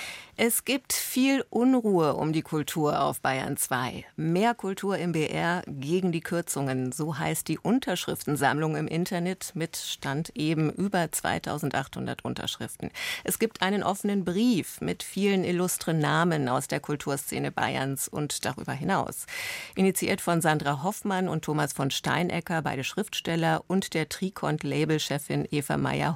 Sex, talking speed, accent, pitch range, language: female, 140 wpm, German, 150-190 Hz, German